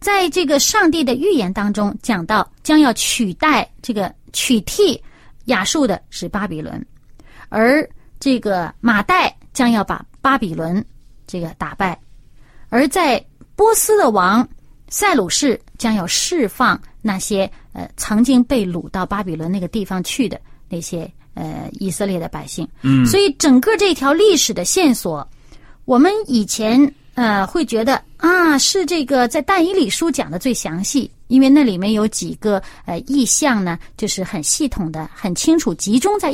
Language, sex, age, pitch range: Chinese, female, 30-49, 200-305 Hz